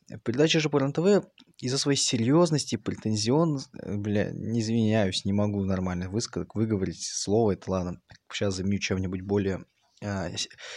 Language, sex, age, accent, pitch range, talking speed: Russian, male, 20-39, native, 100-135 Hz, 125 wpm